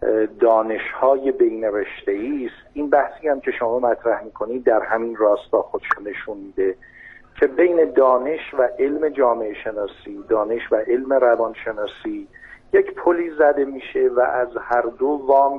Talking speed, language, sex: 145 wpm, Persian, male